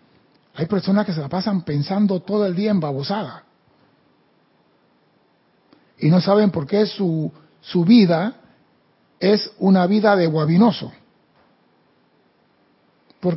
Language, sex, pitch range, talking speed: Spanish, male, 160-205 Hz, 115 wpm